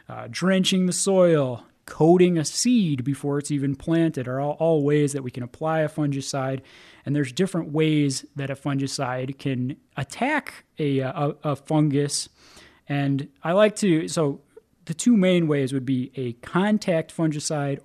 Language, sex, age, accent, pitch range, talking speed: English, male, 30-49, American, 135-165 Hz, 160 wpm